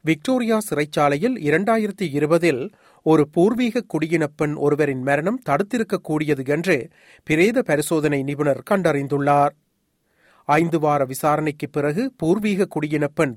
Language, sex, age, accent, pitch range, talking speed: Tamil, male, 40-59, native, 125-165 Hz, 95 wpm